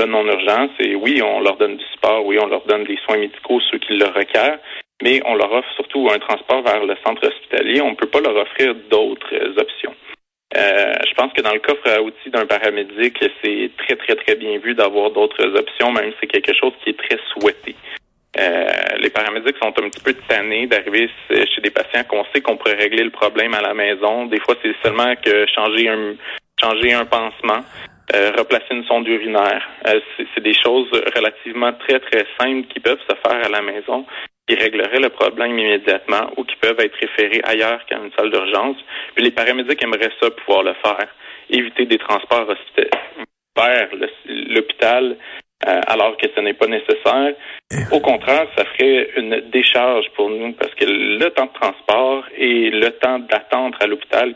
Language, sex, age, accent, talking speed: French, male, 30-49, Canadian, 195 wpm